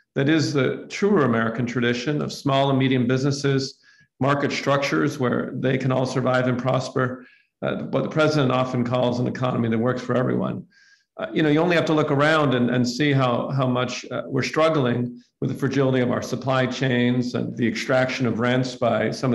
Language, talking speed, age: English, 200 wpm, 50-69